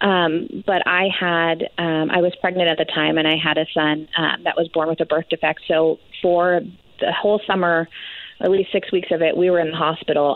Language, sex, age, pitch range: English, female, 30-49, 160-190 Hz